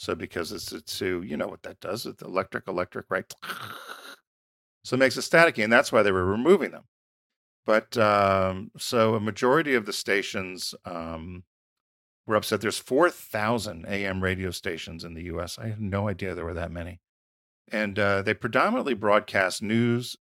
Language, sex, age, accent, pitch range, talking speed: English, male, 50-69, American, 85-105 Hz, 170 wpm